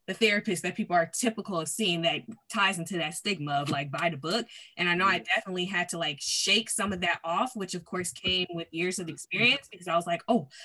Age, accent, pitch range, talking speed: 20-39, American, 185-240 Hz, 250 wpm